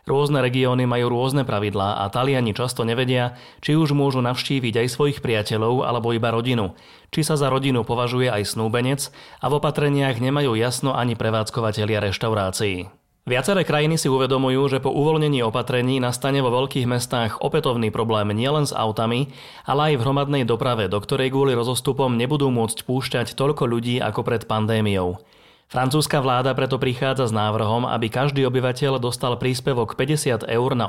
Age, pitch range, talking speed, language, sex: 30-49, 115-135 Hz, 160 wpm, Slovak, male